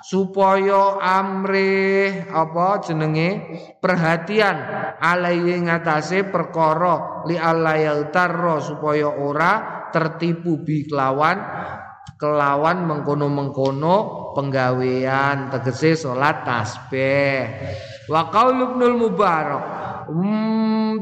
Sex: male